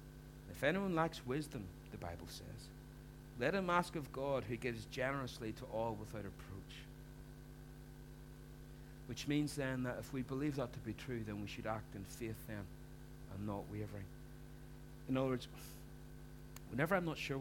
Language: English